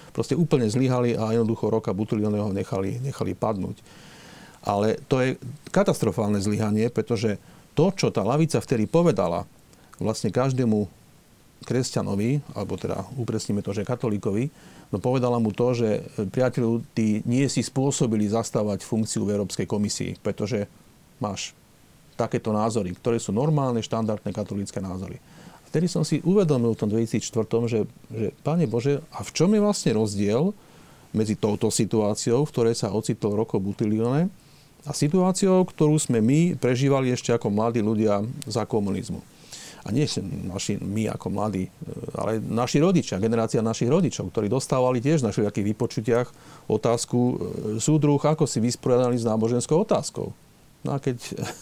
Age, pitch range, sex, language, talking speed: 40-59, 110-140 Hz, male, Slovak, 145 wpm